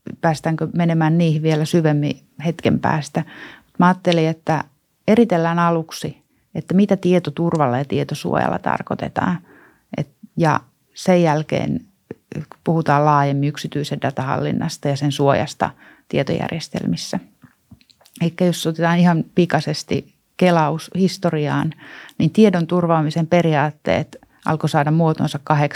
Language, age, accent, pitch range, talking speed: Finnish, 30-49, native, 145-170 Hz, 100 wpm